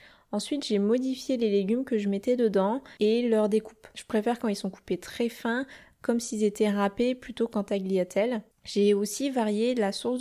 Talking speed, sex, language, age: 190 wpm, female, French, 20-39